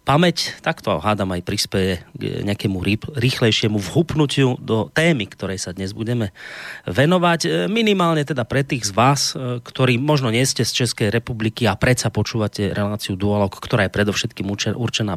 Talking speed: 150 wpm